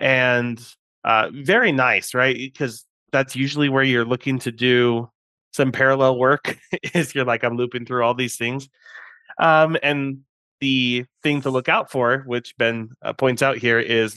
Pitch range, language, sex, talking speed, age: 115-130 Hz, English, male, 170 wpm, 30-49